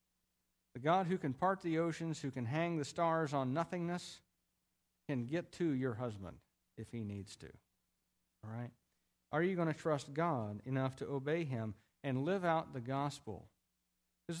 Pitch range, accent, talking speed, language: 105-170 Hz, American, 170 wpm, English